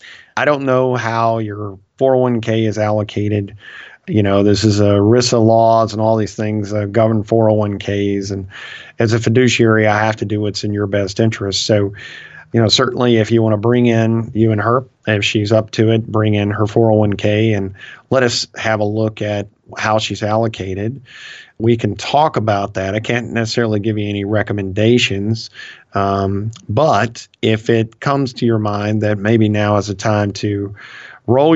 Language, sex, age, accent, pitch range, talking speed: English, male, 40-59, American, 105-115 Hz, 200 wpm